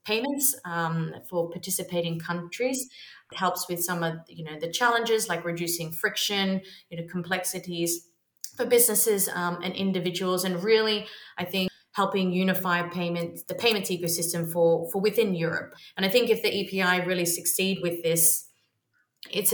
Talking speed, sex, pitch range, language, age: 155 wpm, female, 170-185 Hz, English, 30-49